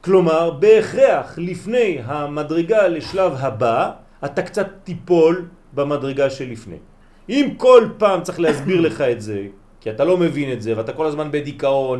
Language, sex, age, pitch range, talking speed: French, male, 40-59, 145-200 Hz, 150 wpm